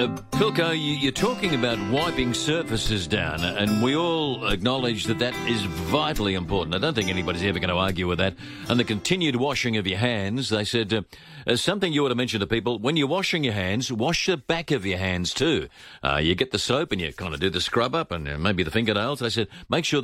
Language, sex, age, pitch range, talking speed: English, male, 50-69, 95-130 Hz, 230 wpm